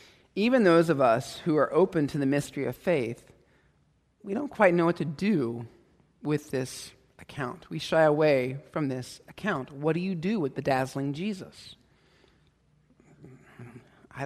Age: 40-59